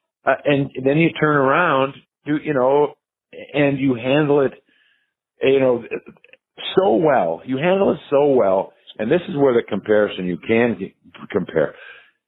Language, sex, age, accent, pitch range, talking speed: English, male, 50-69, American, 95-125 Hz, 150 wpm